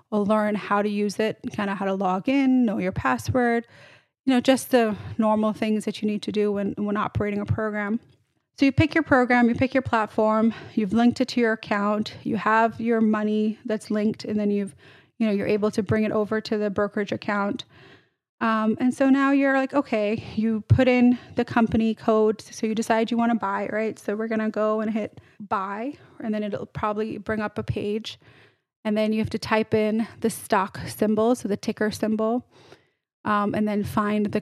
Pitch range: 205-230 Hz